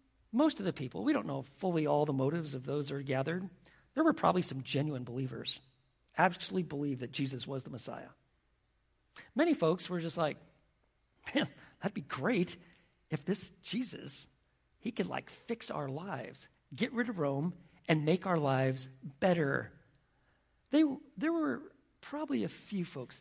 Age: 50-69